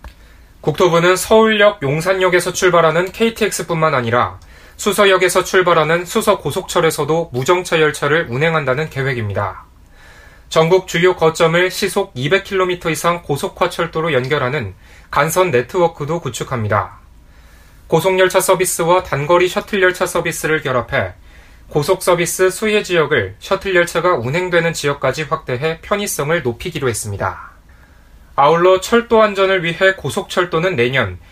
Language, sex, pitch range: Korean, male, 125-185 Hz